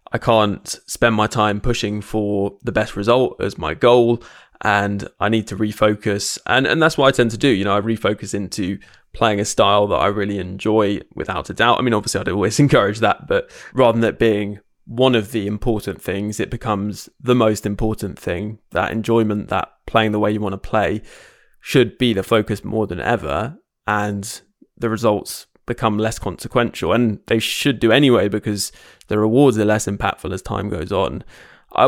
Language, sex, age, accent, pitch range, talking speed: English, male, 20-39, British, 105-115 Hz, 195 wpm